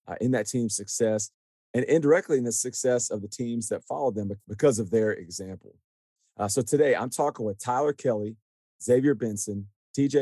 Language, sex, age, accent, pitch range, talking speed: English, male, 40-59, American, 100-115 Hz, 180 wpm